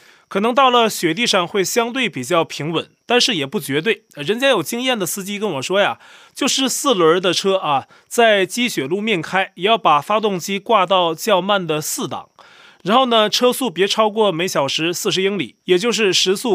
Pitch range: 170-235 Hz